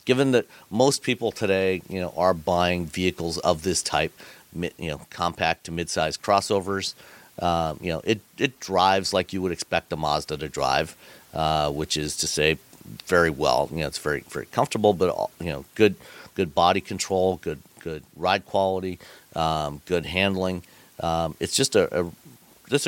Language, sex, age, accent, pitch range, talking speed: English, male, 40-59, American, 85-110 Hz, 175 wpm